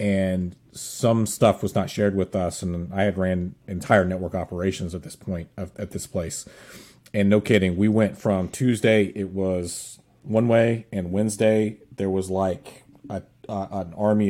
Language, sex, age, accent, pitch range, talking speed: English, male, 30-49, American, 90-105 Hz, 165 wpm